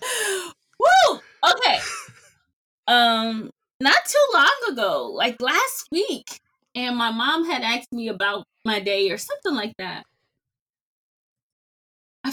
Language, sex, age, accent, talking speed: English, female, 20-39, American, 115 wpm